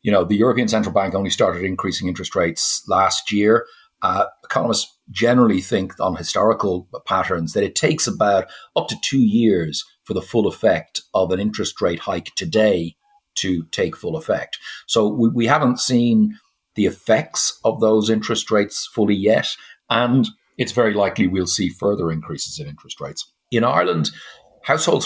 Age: 50-69